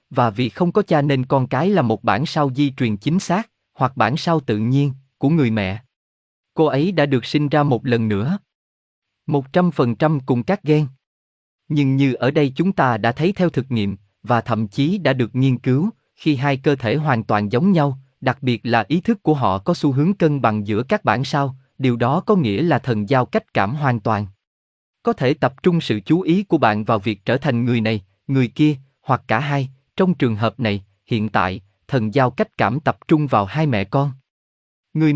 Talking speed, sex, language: 220 wpm, male, Vietnamese